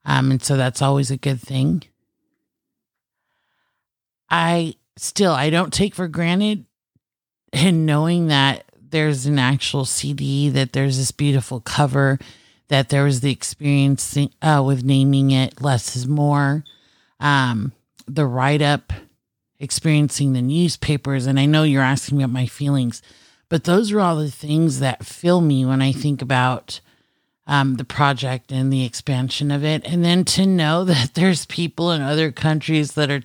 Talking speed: 155 wpm